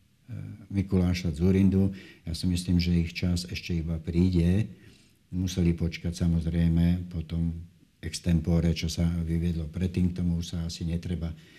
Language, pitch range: Slovak, 85-100 Hz